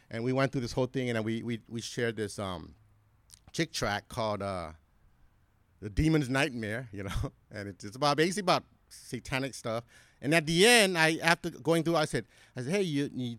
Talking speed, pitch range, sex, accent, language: 205 wpm, 110-165 Hz, male, American, English